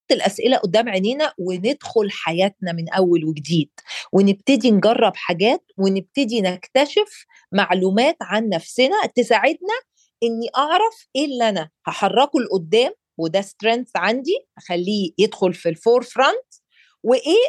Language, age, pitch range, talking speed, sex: Arabic, 40-59, 210-310 Hz, 115 wpm, female